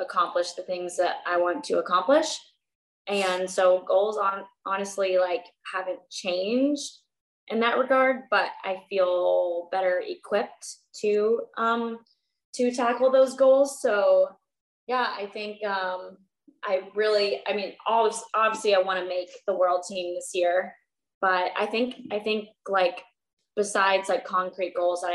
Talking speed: 145 wpm